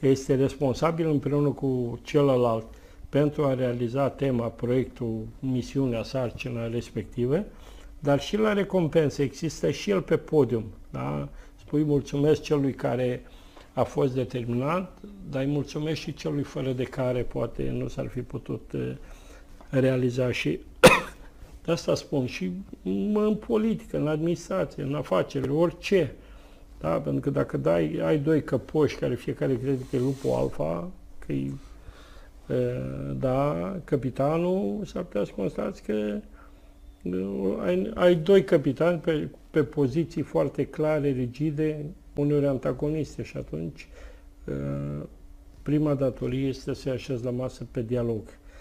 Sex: male